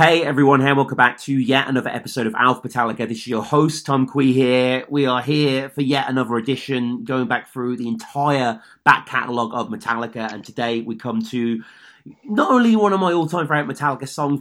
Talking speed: 205 wpm